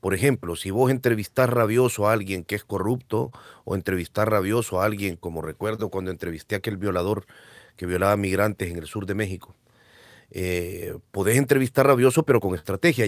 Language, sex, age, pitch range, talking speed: Spanish, male, 40-59, 100-130 Hz, 175 wpm